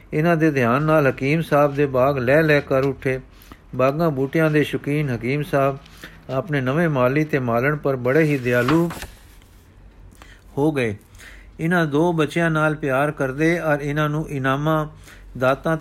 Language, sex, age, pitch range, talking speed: Punjabi, male, 50-69, 125-150 Hz, 150 wpm